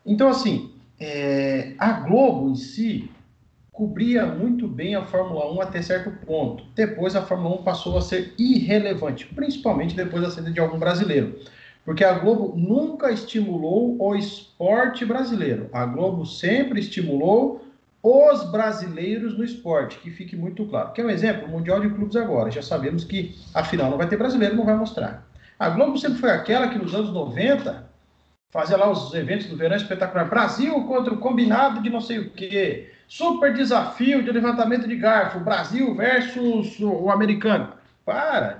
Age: 40-59